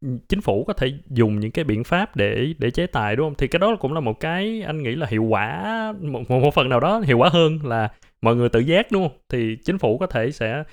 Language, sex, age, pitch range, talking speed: Vietnamese, male, 20-39, 110-155 Hz, 265 wpm